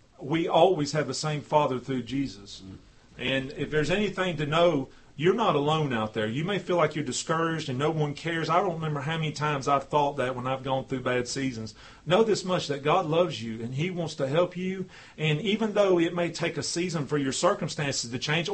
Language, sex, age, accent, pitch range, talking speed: English, male, 40-59, American, 140-175 Hz, 225 wpm